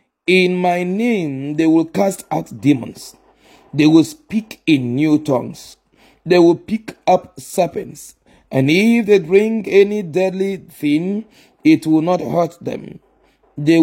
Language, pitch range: English, 145-185 Hz